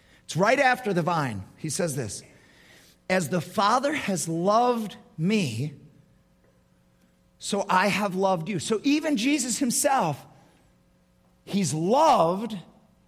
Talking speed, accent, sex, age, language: 110 wpm, American, male, 50-69, English